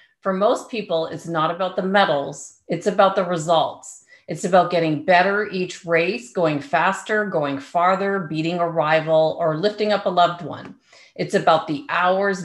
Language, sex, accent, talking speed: English, female, American, 170 wpm